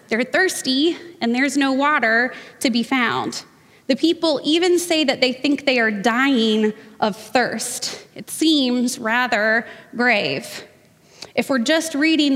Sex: female